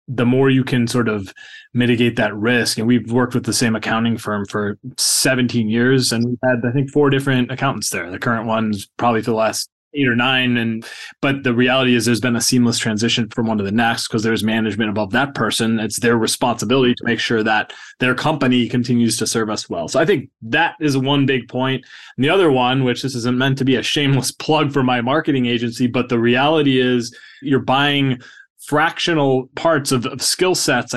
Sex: male